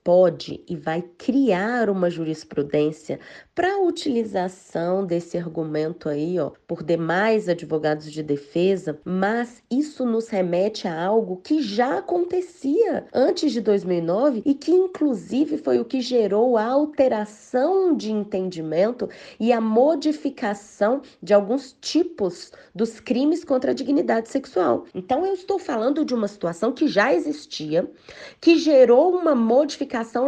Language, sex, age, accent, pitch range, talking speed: Portuguese, female, 20-39, Brazilian, 185-275 Hz, 135 wpm